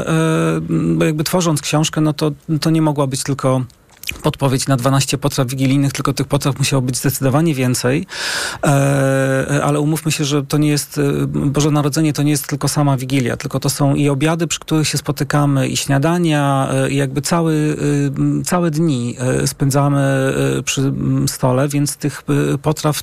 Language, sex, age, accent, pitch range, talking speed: Polish, male, 40-59, native, 135-150 Hz, 155 wpm